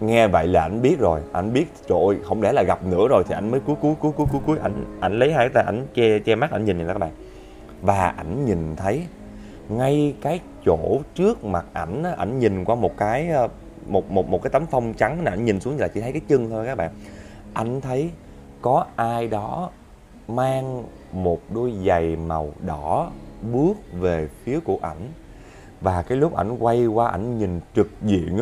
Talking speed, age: 205 wpm, 20-39